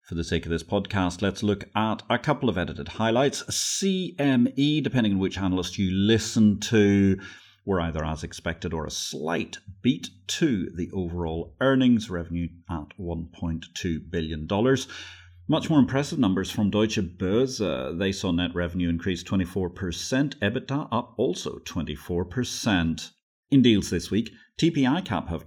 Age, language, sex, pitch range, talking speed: 40-59, English, male, 85-115 Hz, 145 wpm